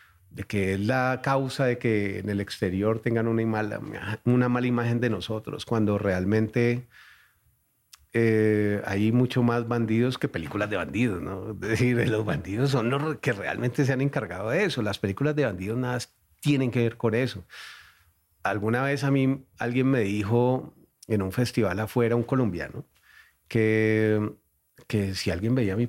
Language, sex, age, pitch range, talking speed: Spanish, male, 40-59, 105-130 Hz, 165 wpm